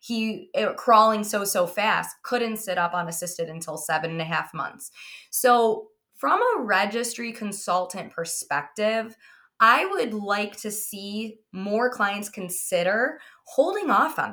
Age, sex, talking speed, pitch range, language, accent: 20-39, female, 135 wpm, 185-235 Hz, English, American